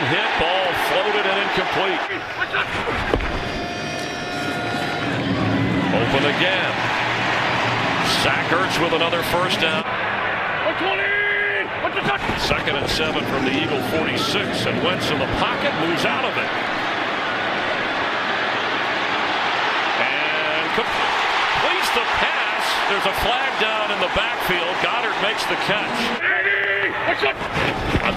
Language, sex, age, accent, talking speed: English, male, 50-69, American, 100 wpm